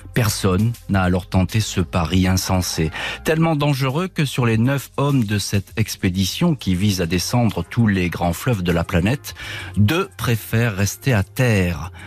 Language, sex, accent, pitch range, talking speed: French, male, French, 90-120 Hz, 165 wpm